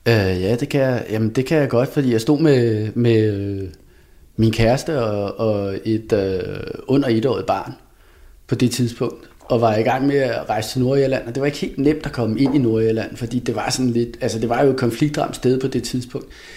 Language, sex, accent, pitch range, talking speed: Danish, male, native, 115-135 Hz, 215 wpm